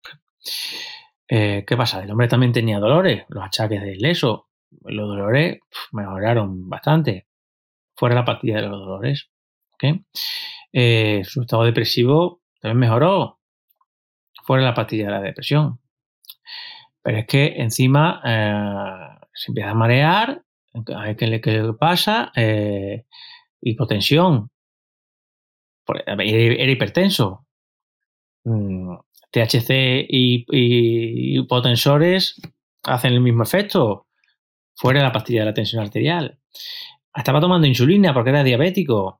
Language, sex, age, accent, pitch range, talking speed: Spanish, male, 30-49, Spanish, 110-160 Hz, 120 wpm